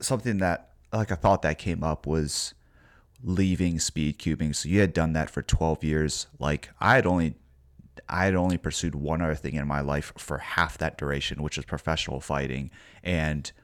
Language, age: English, 30-49